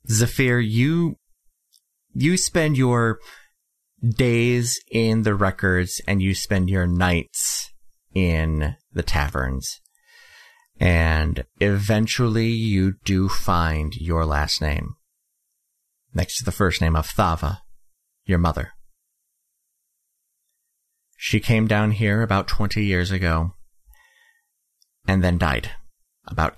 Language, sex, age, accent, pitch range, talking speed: English, male, 30-49, American, 80-105 Hz, 105 wpm